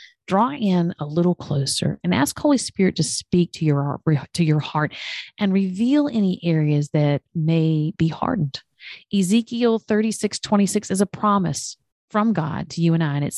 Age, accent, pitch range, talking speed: 40-59, American, 150-180 Hz, 165 wpm